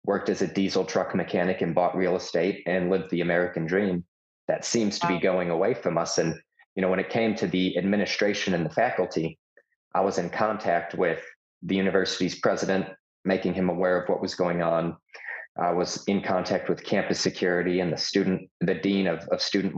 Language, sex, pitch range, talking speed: English, male, 90-100 Hz, 200 wpm